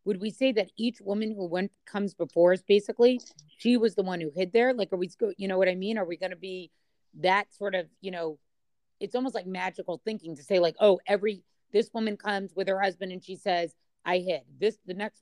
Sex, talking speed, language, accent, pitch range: female, 235 wpm, English, American, 175-215 Hz